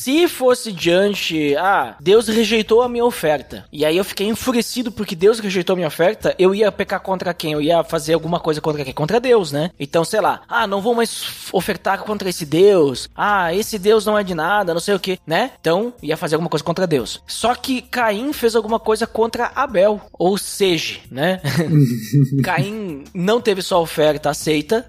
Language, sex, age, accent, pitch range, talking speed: Portuguese, male, 20-39, Brazilian, 165-230 Hz, 200 wpm